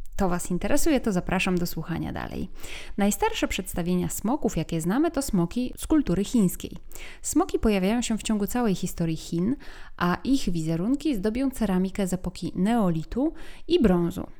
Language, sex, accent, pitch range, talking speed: Polish, female, native, 175-230 Hz, 150 wpm